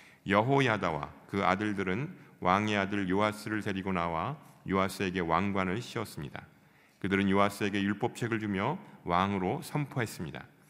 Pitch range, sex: 90-110 Hz, male